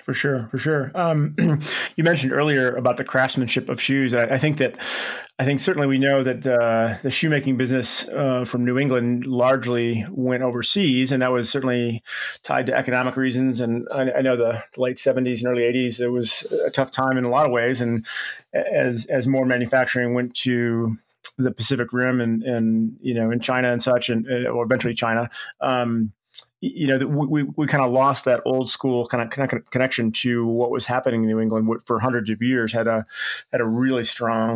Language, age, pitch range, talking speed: English, 30-49, 120-135 Hz, 200 wpm